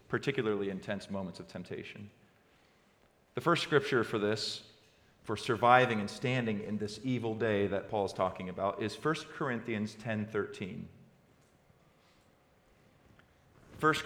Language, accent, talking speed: English, American, 120 wpm